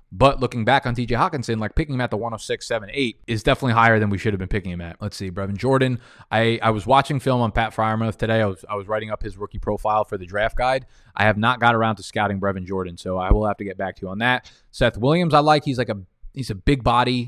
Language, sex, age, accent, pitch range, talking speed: English, male, 20-39, American, 100-120 Hz, 285 wpm